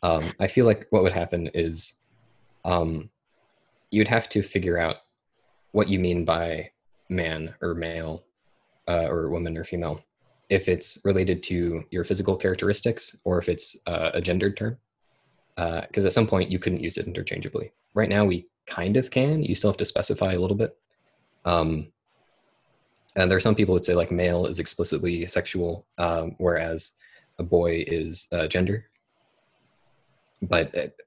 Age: 20-39